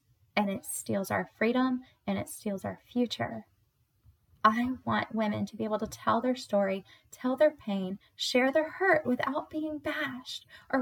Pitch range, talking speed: 175-250 Hz, 165 wpm